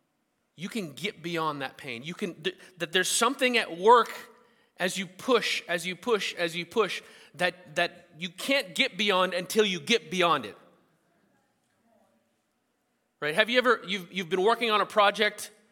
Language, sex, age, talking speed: English, male, 30-49, 170 wpm